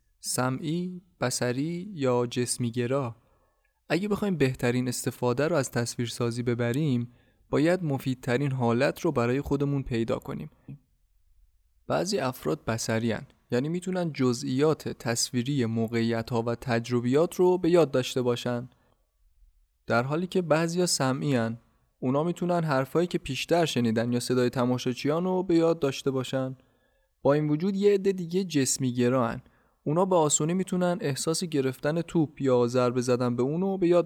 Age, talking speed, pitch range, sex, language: 20-39, 130 wpm, 120-155 Hz, male, Persian